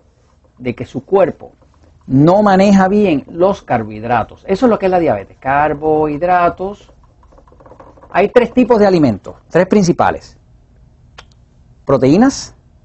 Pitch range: 130-205 Hz